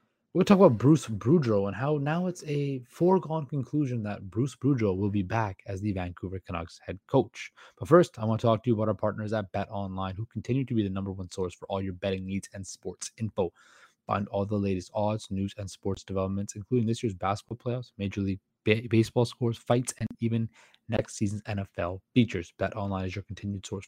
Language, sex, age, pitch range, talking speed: English, male, 20-39, 95-120 Hz, 215 wpm